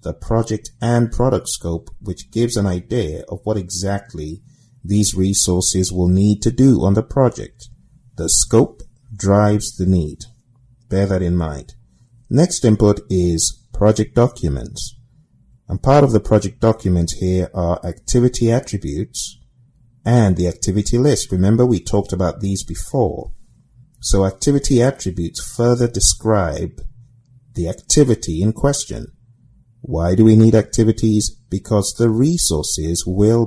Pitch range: 90-120 Hz